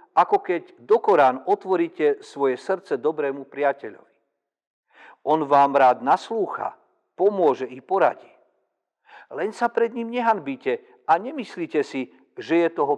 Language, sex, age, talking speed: Slovak, male, 50-69, 125 wpm